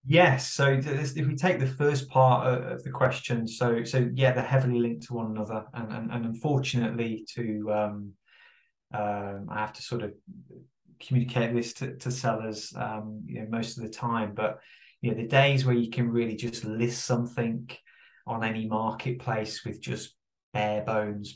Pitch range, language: 105-125 Hz, English